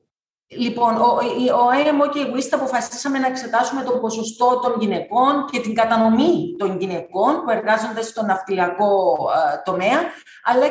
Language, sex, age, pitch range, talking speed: Greek, female, 40-59, 210-255 Hz, 140 wpm